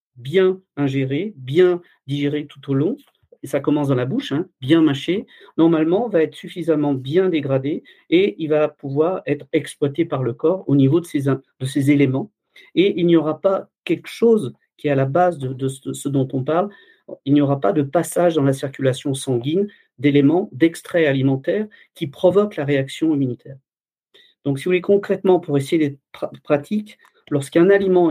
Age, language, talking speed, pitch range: 50-69, French, 185 wpm, 140-180 Hz